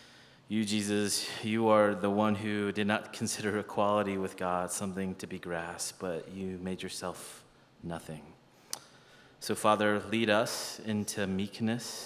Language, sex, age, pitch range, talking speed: English, male, 30-49, 95-105 Hz, 140 wpm